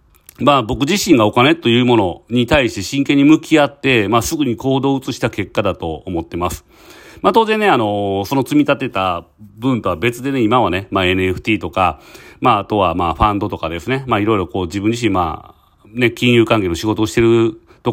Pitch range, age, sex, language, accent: 95-135 Hz, 40-59, male, Japanese, native